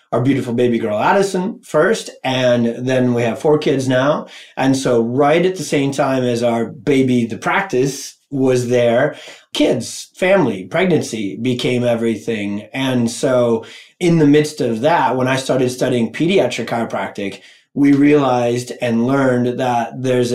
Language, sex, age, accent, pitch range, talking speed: English, male, 30-49, American, 120-145 Hz, 150 wpm